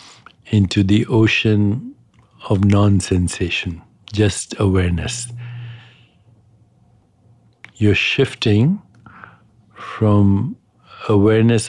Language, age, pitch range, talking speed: English, 60-79, 100-115 Hz, 55 wpm